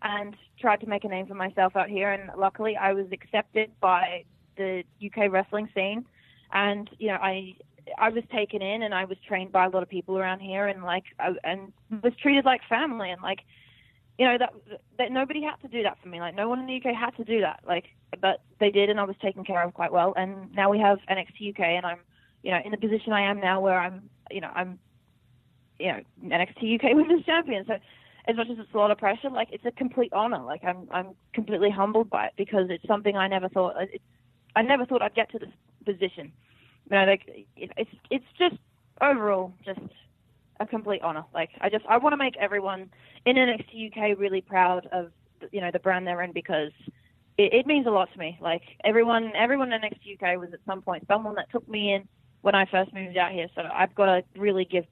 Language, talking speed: English, 235 wpm